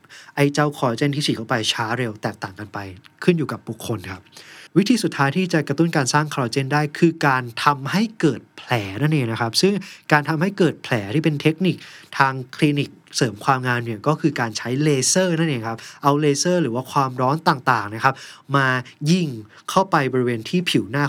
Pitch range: 120-160 Hz